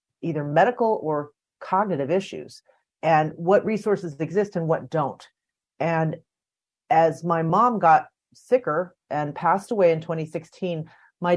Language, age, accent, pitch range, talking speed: English, 40-59, American, 150-180 Hz, 125 wpm